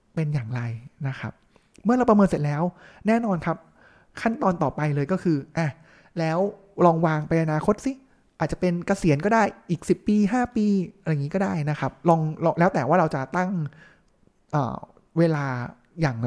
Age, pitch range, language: 20-39, 145-185 Hz, Thai